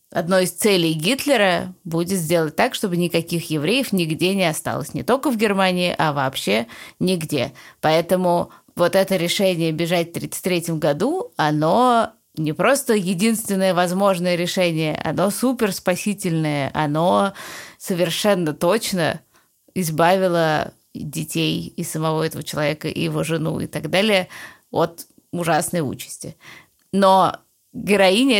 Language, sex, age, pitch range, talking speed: Russian, female, 20-39, 165-190 Hz, 120 wpm